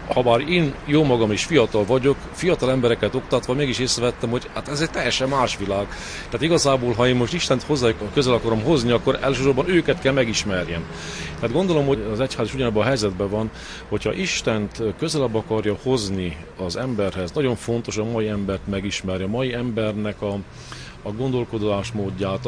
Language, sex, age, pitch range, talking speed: Hungarian, male, 40-59, 105-130 Hz, 170 wpm